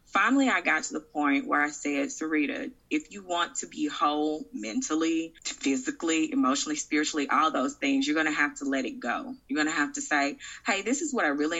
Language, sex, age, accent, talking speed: English, female, 20-39, American, 220 wpm